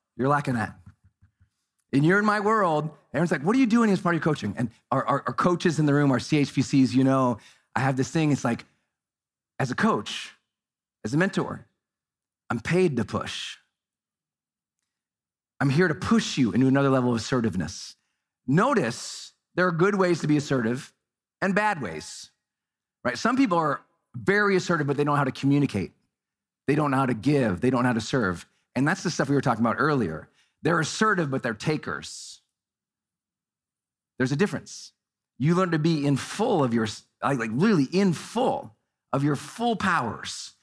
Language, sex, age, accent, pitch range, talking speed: English, male, 40-59, American, 130-205 Hz, 190 wpm